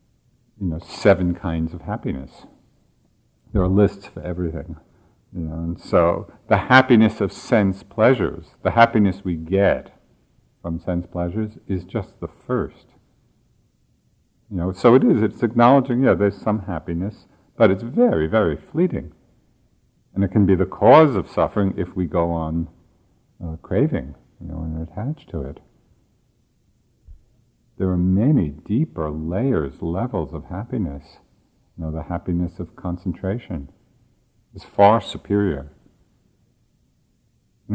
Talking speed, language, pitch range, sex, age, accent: 135 wpm, English, 80-110 Hz, male, 50-69, American